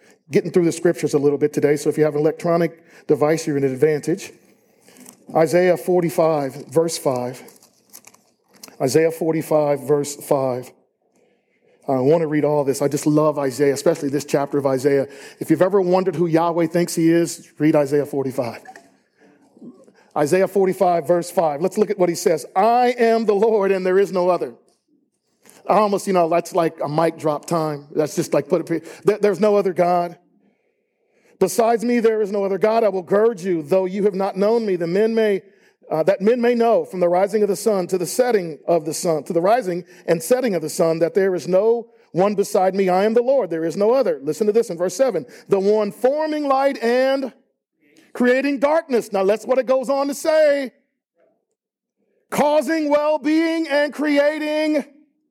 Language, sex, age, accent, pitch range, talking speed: English, male, 40-59, American, 160-230 Hz, 190 wpm